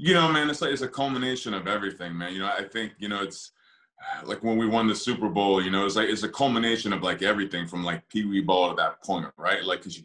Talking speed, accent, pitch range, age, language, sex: 275 wpm, American, 90-105 Hz, 30-49, English, male